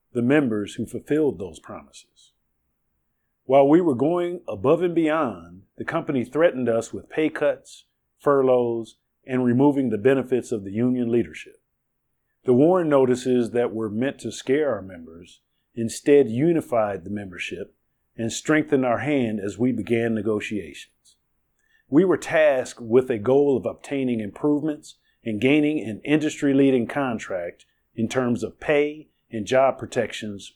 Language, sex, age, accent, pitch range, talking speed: English, male, 40-59, American, 110-140 Hz, 140 wpm